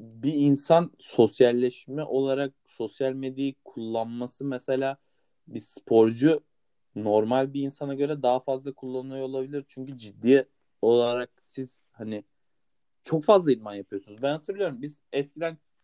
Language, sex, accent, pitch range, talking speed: Turkish, male, native, 115-160 Hz, 115 wpm